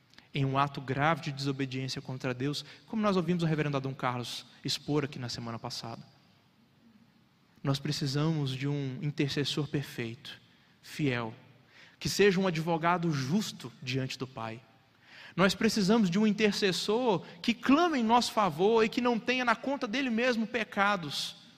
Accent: Brazilian